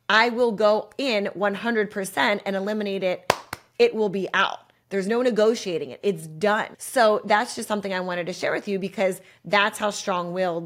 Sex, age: female, 30-49